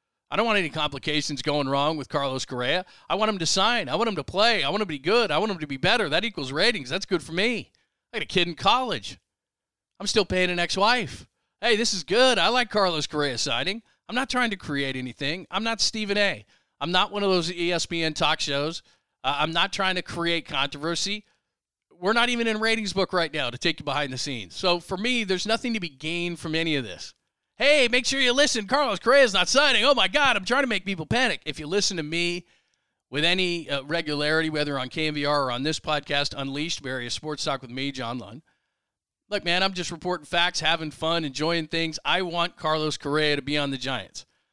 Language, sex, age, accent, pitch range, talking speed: English, male, 40-59, American, 145-190 Hz, 230 wpm